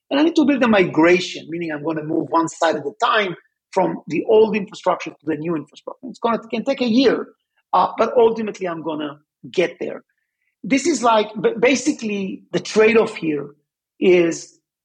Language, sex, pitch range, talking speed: English, male, 170-220 Hz, 200 wpm